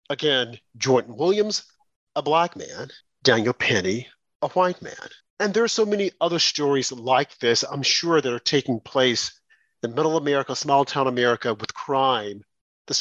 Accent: American